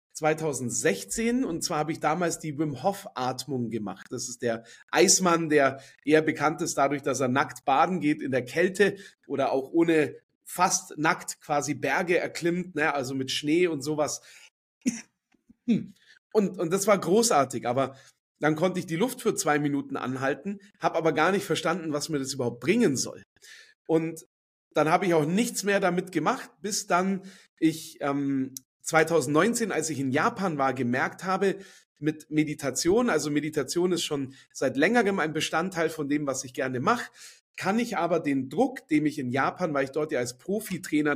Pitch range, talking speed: 140-180 Hz, 175 wpm